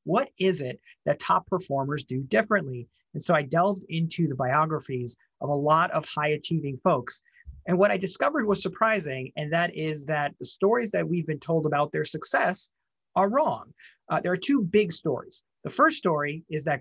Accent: American